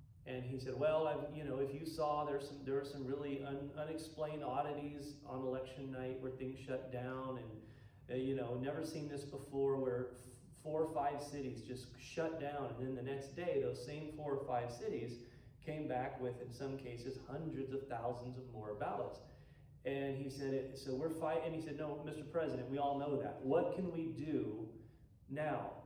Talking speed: 195 wpm